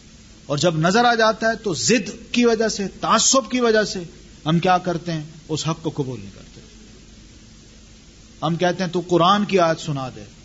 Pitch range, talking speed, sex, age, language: 125-165 Hz, 195 wpm, male, 40-59, Urdu